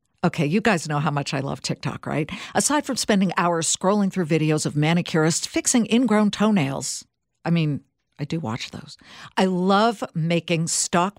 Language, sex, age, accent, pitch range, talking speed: English, female, 60-79, American, 150-205 Hz, 170 wpm